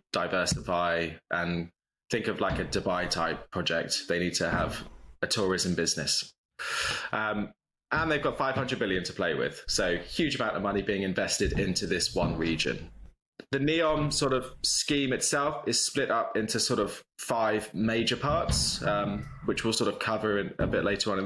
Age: 20-39